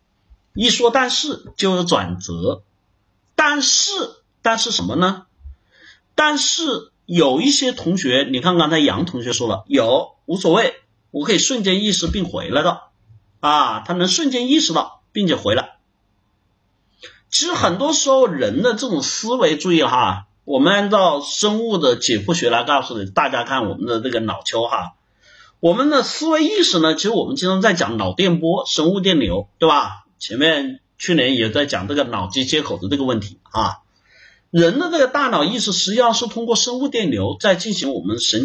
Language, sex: Chinese, male